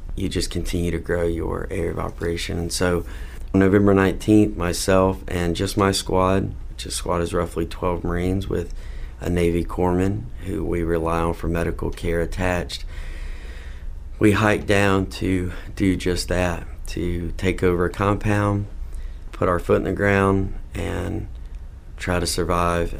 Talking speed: 155 wpm